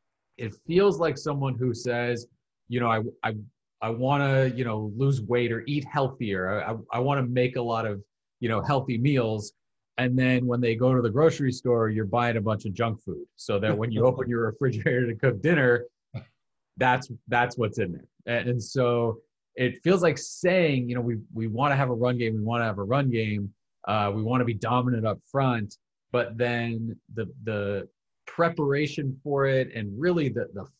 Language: English